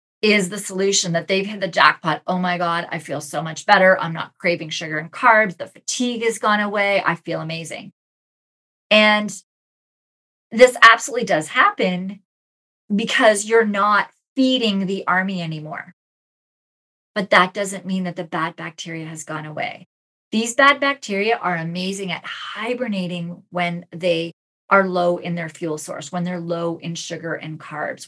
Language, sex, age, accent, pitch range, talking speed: English, female, 30-49, American, 170-220 Hz, 160 wpm